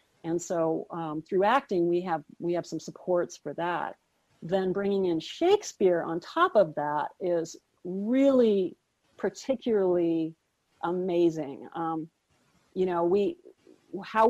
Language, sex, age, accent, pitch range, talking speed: English, female, 50-69, American, 160-190 Hz, 125 wpm